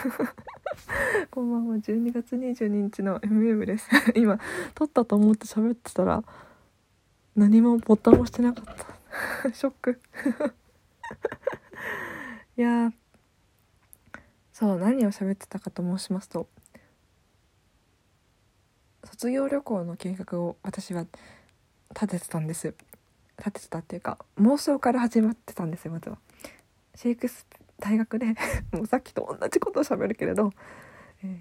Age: 20-39